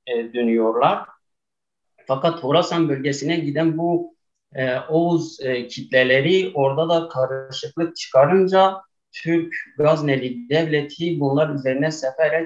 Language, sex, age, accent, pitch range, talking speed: Turkish, male, 50-69, native, 130-165 Hz, 85 wpm